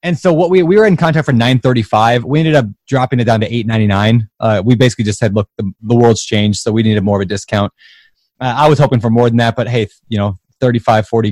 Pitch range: 110-155 Hz